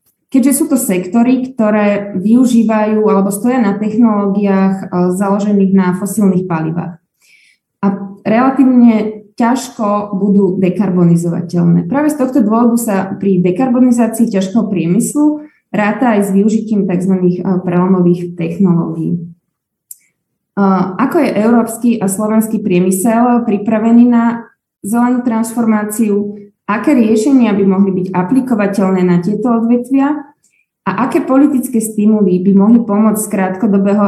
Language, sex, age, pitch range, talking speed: Slovak, female, 20-39, 190-235 Hz, 110 wpm